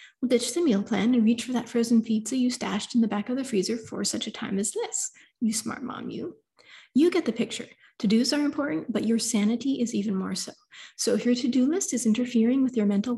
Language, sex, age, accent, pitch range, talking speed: English, female, 30-49, American, 210-250 Hz, 235 wpm